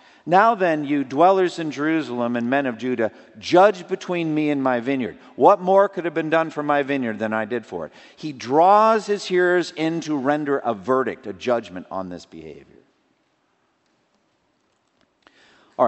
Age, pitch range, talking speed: 50-69, 120-170 Hz, 170 wpm